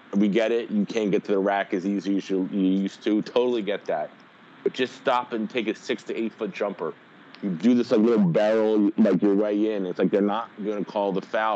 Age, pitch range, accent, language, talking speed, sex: 30-49, 95-110 Hz, American, English, 245 wpm, male